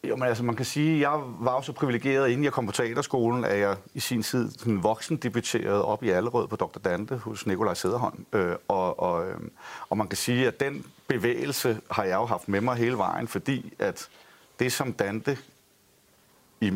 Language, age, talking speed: Danish, 30-49, 185 wpm